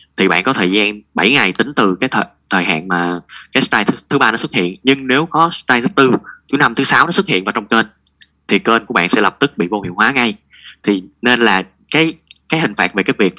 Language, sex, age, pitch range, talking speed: Vietnamese, male, 20-39, 90-125 Hz, 265 wpm